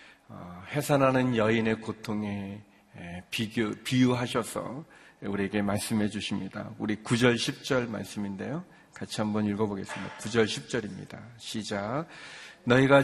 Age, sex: 40-59, male